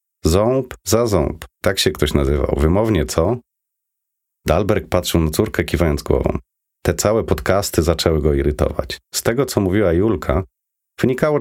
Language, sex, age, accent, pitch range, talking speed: Polish, male, 40-59, native, 80-115 Hz, 140 wpm